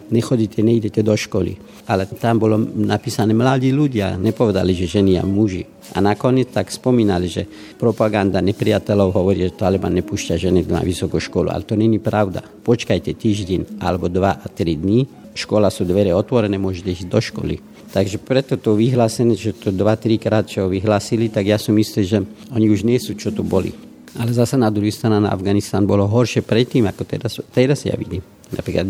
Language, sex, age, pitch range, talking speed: Slovak, male, 50-69, 100-115 Hz, 185 wpm